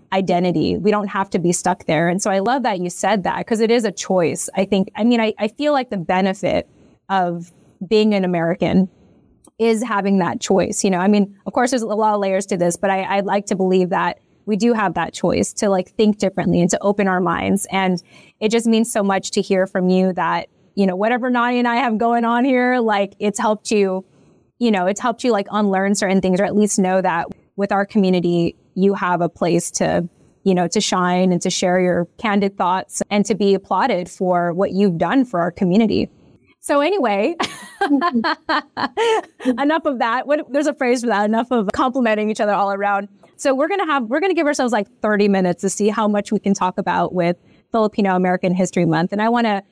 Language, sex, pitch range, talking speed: English, female, 185-230 Hz, 225 wpm